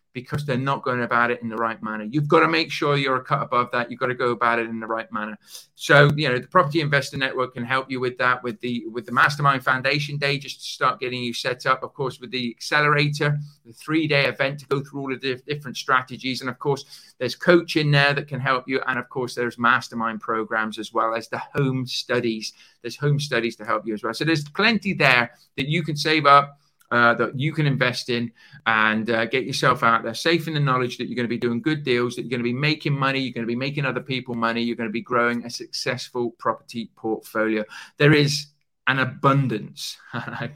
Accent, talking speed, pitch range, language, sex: British, 240 wpm, 120-145 Hz, English, male